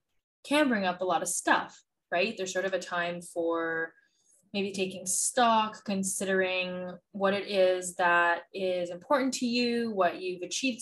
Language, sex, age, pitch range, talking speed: English, female, 20-39, 180-215 Hz, 160 wpm